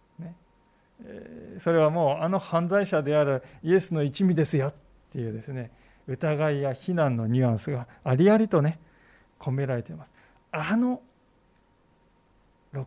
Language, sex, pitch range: Japanese, male, 135-185 Hz